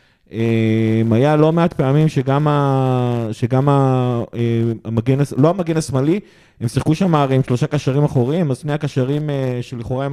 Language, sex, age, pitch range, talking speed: Hebrew, male, 30-49, 125-150 Hz, 155 wpm